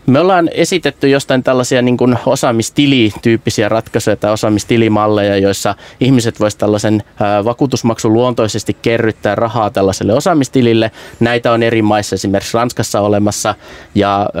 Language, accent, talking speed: Finnish, native, 115 wpm